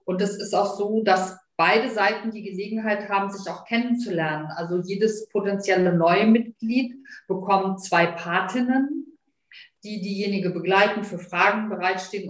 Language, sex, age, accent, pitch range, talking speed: German, female, 40-59, German, 185-225 Hz, 135 wpm